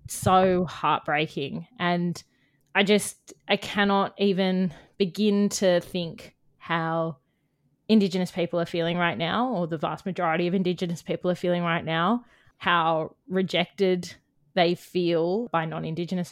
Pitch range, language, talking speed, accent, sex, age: 165-190 Hz, English, 130 wpm, Australian, female, 20-39